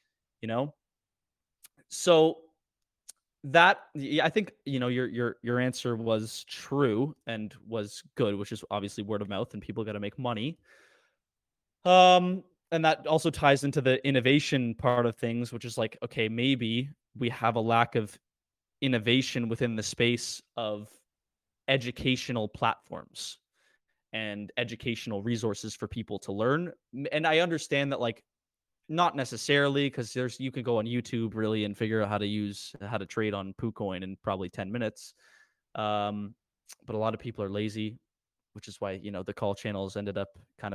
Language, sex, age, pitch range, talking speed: English, male, 20-39, 105-135 Hz, 165 wpm